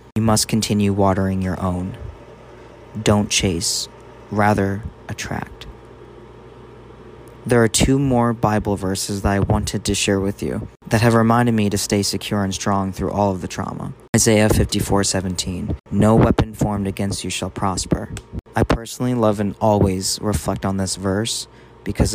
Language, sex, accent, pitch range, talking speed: English, male, American, 95-115 Hz, 150 wpm